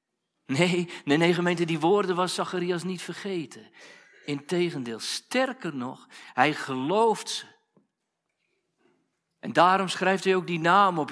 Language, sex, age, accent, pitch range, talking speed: Dutch, male, 50-69, Dutch, 140-180 Hz, 130 wpm